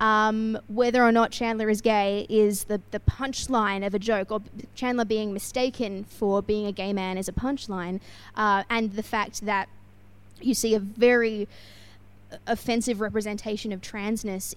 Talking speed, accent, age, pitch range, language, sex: 160 wpm, Australian, 20-39, 190-220 Hz, English, female